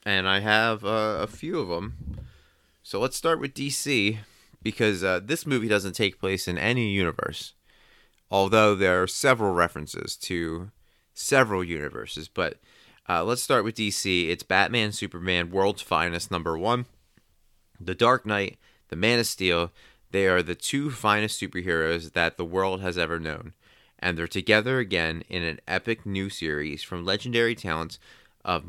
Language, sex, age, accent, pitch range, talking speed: English, male, 30-49, American, 85-110 Hz, 160 wpm